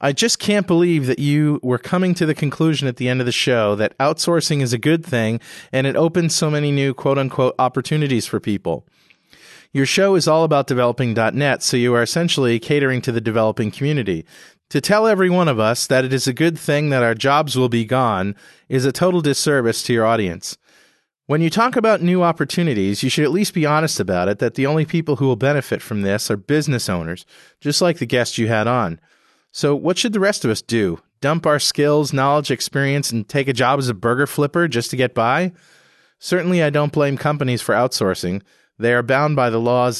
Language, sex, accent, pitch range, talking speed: English, male, American, 120-155 Hz, 215 wpm